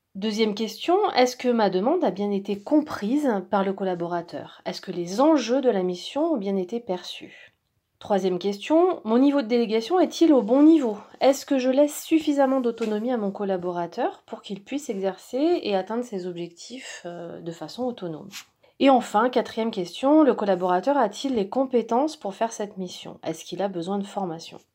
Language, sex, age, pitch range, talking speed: French, female, 30-49, 190-270 Hz, 175 wpm